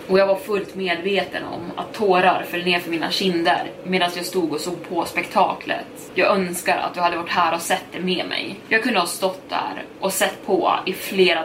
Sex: female